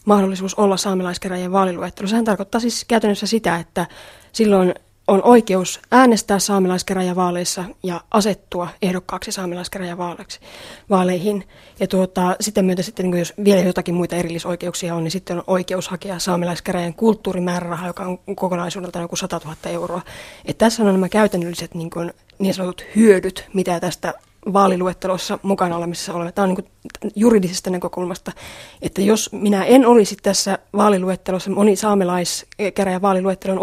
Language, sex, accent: Finnish, female, native